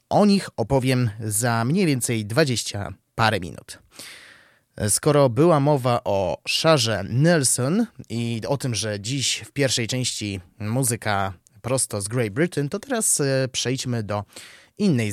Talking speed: 130 wpm